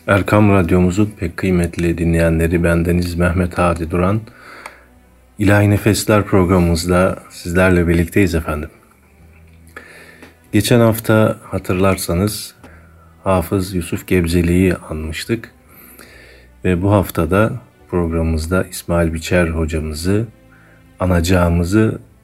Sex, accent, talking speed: male, native, 80 wpm